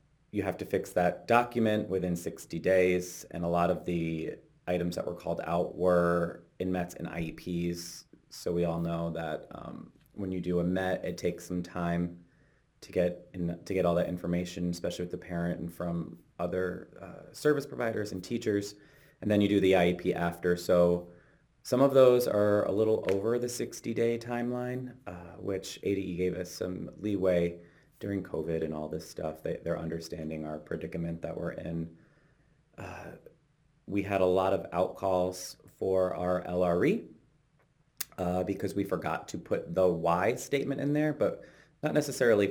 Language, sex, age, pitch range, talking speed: English, male, 30-49, 85-100 Hz, 170 wpm